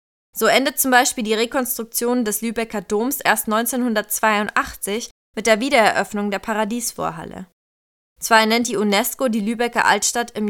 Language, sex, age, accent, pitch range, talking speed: German, female, 20-39, German, 200-240 Hz, 135 wpm